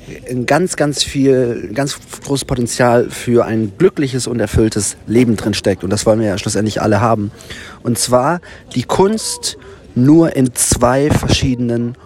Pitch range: 105-130 Hz